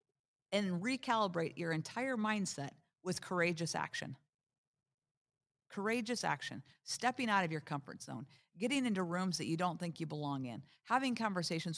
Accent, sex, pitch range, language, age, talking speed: American, female, 145-205 Hz, English, 50-69, 145 wpm